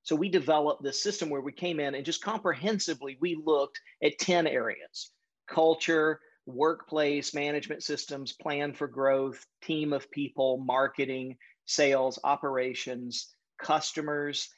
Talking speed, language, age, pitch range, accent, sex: 130 wpm, English, 40-59, 135-160 Hz, American, male